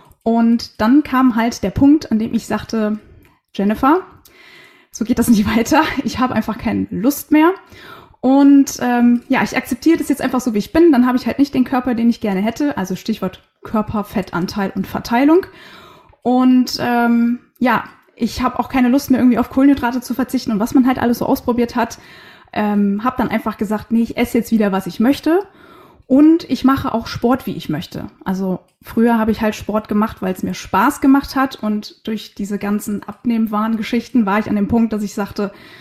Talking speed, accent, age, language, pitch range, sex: 205 wpm, German, 20-39, German, 210-260 Hz, female